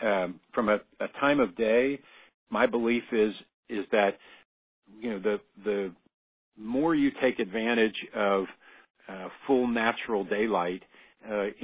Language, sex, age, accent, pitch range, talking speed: English, male, 50-69, American, 95-110 Hz, 135 wpm